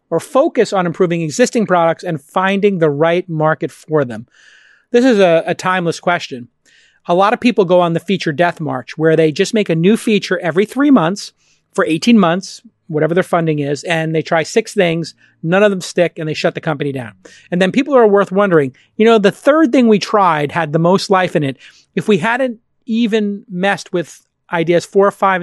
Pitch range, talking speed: 160-200 Hz, 210 wpm